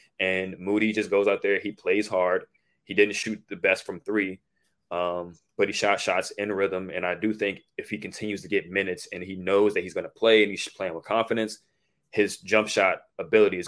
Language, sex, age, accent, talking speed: English, male, 20-39, American, 225 wpm